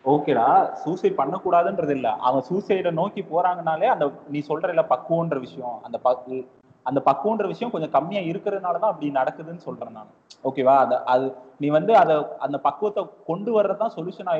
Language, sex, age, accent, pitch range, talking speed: Tamil, male, 20-39, native, 140-190 Hz, 150 wpm